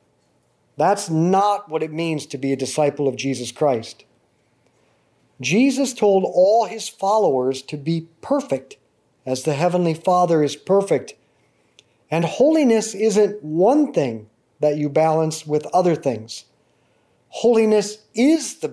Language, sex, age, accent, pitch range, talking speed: English, male, 50-69, American, 150-210 Hz, 130 wpm